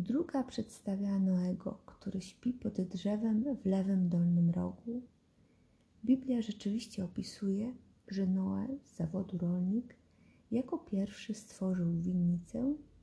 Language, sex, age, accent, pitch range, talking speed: Polish, female, 30-49, native, 185-240 Hz, 105 wpm